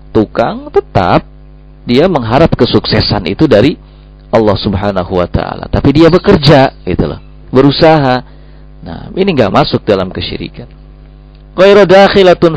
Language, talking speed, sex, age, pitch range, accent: Indonesian, 115 wpm, male, 40-59, 115-140 Hz, native